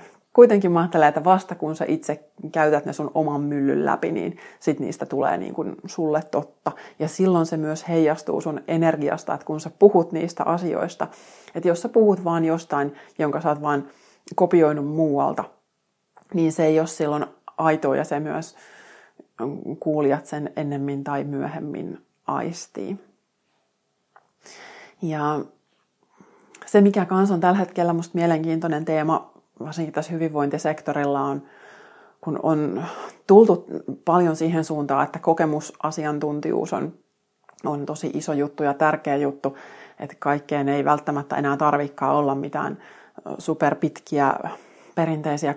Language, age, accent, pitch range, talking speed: Finnish, 30-49, native, 150-170 Hz, 130 wpm